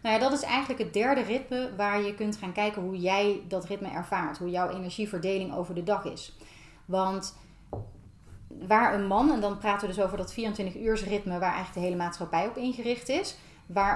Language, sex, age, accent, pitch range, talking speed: Dutch, female, 30-49, Dutch, 175-220 Hz, 205 wpm